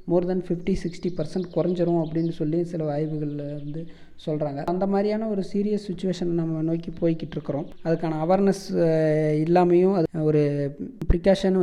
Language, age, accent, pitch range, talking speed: Tamil, 20-39, native, 155-190 Hz, 130 wpm